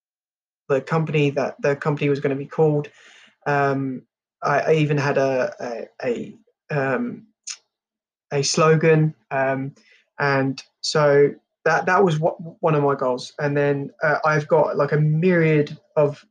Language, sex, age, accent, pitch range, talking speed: English, male, 20-39, British, 145-170 Hz, 145 wpm